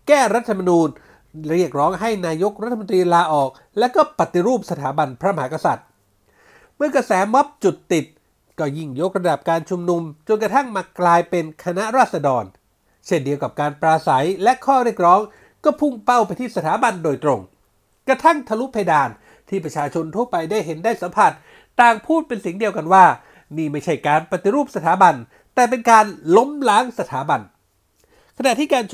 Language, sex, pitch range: Thai, male, 165-235 Hz